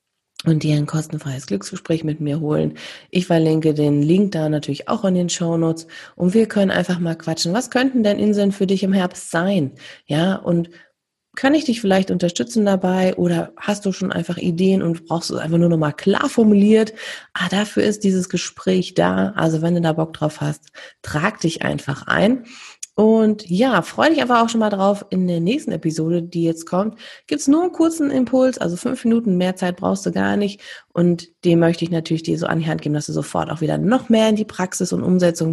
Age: 30-49